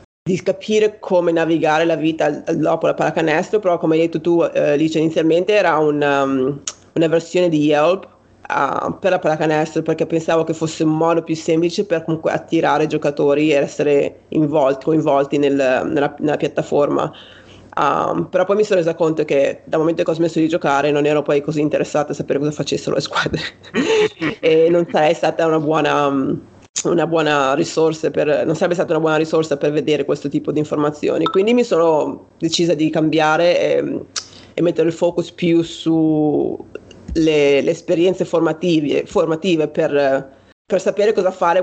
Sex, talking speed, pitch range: female, 175 wpm, 150-170 Hz